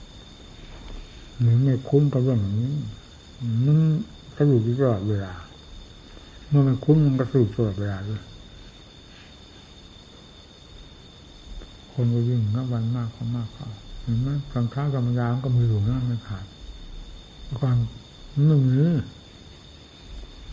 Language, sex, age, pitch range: Thai, male, 60-79, 100-125 Hz